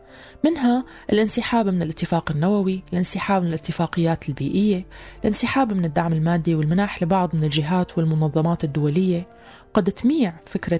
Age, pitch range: 20-39, 165-215 Hz